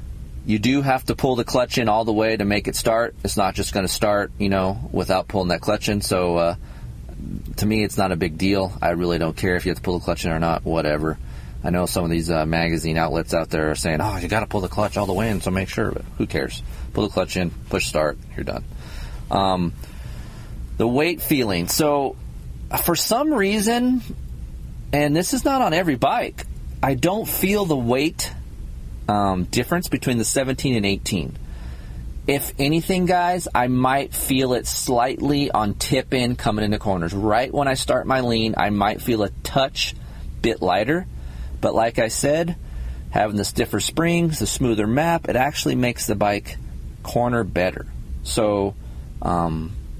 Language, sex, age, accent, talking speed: English, male, 30-49, American, 195 wpm